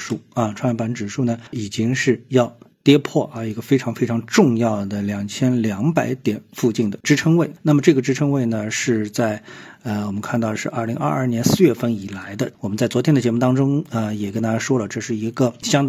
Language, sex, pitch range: Chinese, male, 110-130 Hz